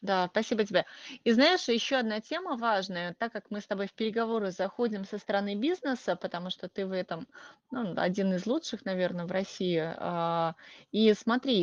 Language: Russian